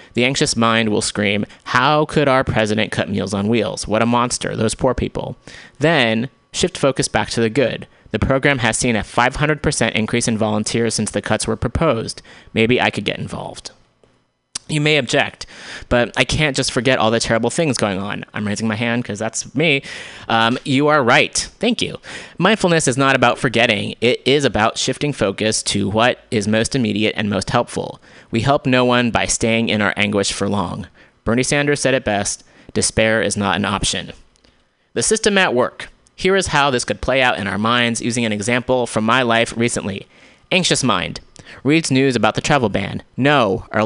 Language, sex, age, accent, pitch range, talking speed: English, male, 30-49, American, 110-130 Hz, 195 wpm